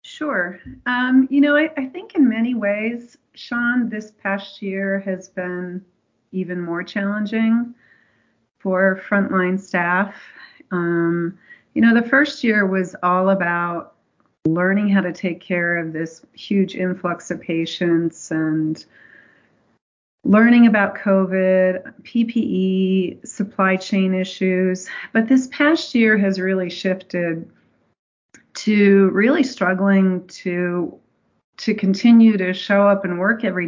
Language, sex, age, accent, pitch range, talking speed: English, female, 40-59, American, 175-210 Hz, 125 wpm